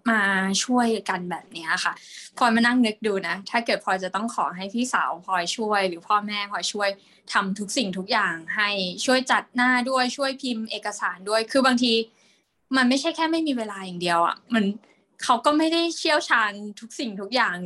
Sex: female